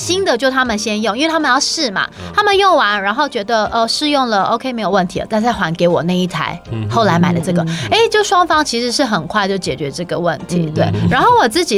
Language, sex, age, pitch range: Chinese, female, 30-49, 175-240 Hz